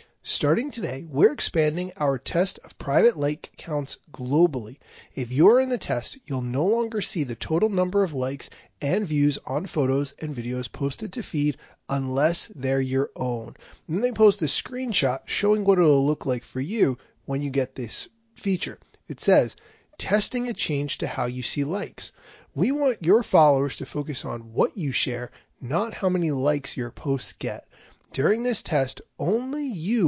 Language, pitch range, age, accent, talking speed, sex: English, 130-185 Hz, 30-49, American, 175 wpm, male